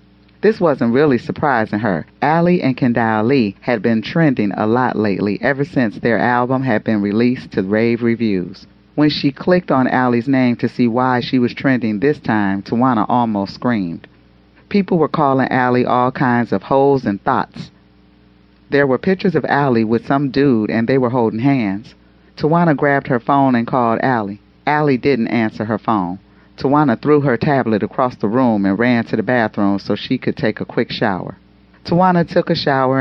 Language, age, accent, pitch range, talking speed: English, 40-59, American, 110-140 Hz, 180 wpm